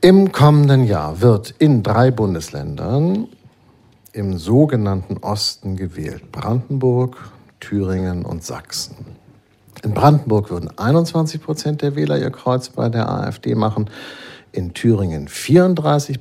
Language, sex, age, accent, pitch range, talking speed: German, male, 50-69, German, 105-135 Hz, 115 wpm